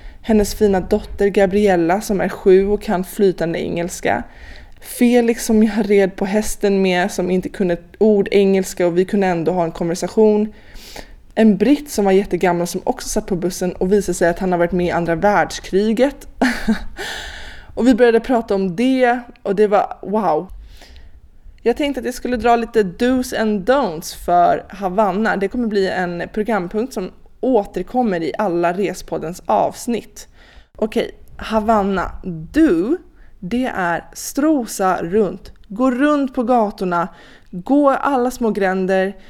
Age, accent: 20-39, native